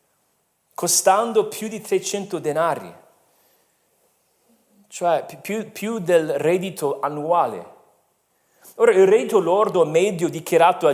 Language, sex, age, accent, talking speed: Italian, male, 40-59, native, 100 wpm